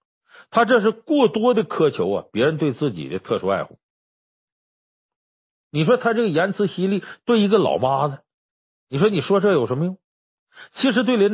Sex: male